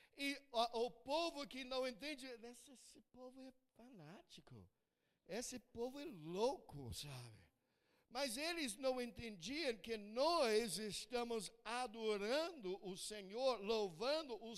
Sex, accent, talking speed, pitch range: male, Brazilian, 120 wpm, 210-270 Hz